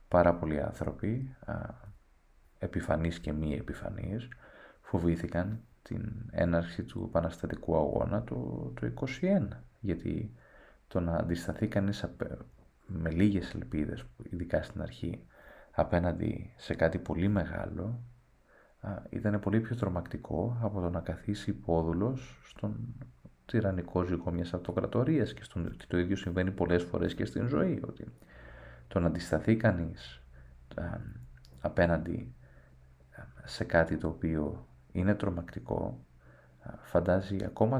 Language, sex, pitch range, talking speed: Greek, male, 85-115 Hz, 120 wpm